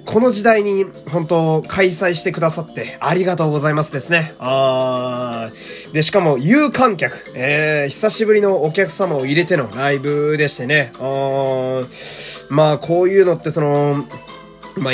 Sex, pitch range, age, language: male, 125-190 Hz, 20-39, Japanese